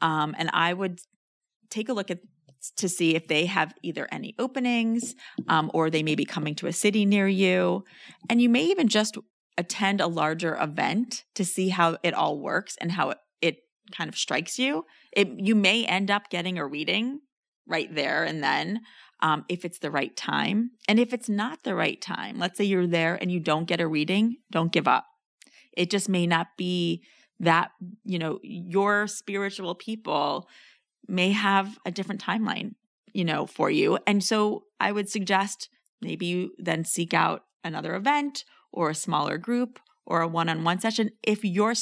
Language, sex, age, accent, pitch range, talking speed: English, female, 30-49, American, 175-220 Hz, 185 wpm